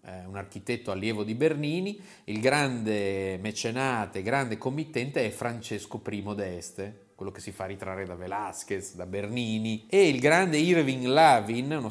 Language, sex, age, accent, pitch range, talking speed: Italian, male, 30-49, native, 105-135 Hz, 145 wpm